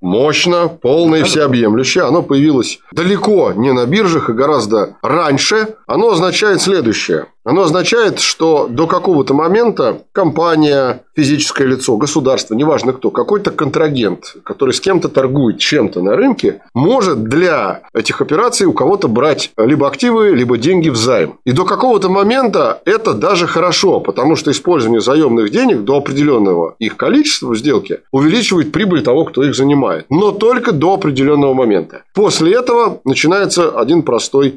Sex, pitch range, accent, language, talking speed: male, 140-210 Hz, native, Russian, 145 wpm